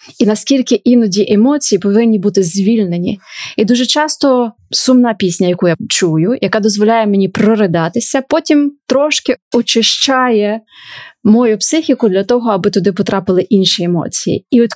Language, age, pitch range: Ukrainian, 20-39, 195-245 Hz